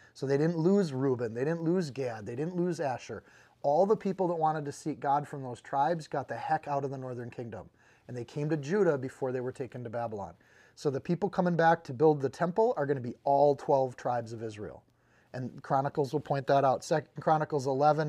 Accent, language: American, English